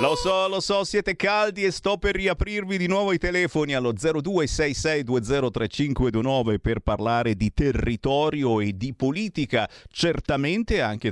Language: Italian